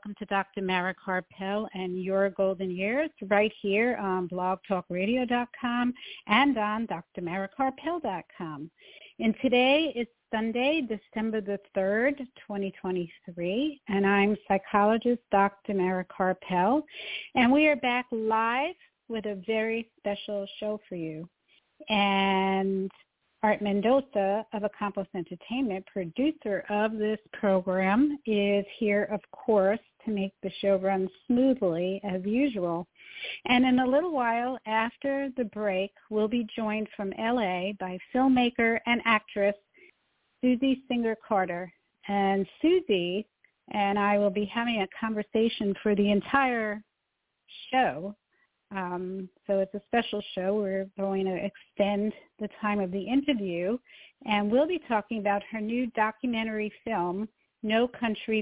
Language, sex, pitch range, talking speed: English, female, 195-240 Hz, 125 wpm